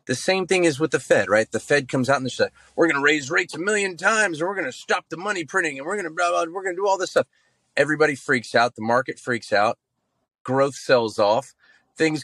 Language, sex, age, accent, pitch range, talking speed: English, male, 30-49, American, 110-145 Hz, 280 wpm